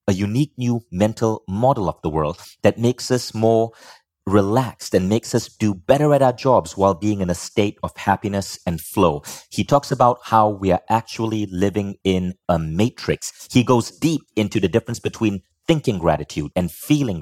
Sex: male